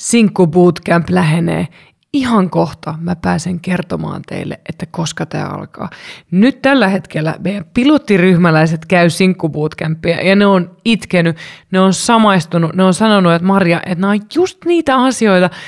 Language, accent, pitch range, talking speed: Finnish, native, 170-215 Hz, 145 wpm